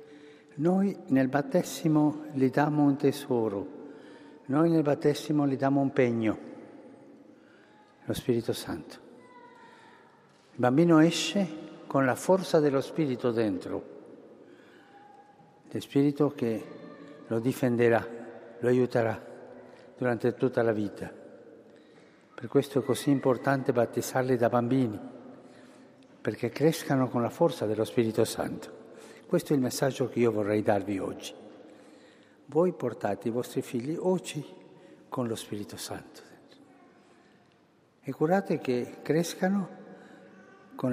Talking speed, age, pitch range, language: 115 wpm, 60-79, 115-145 Hz, Italian